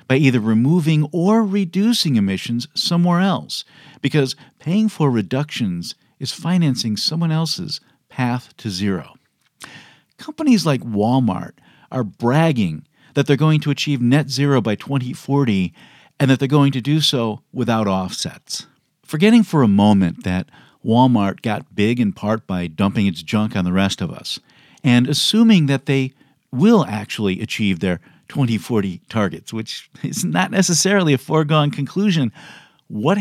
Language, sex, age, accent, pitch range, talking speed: English, male, 50-69, American, 110-160 Hz, 145 wpm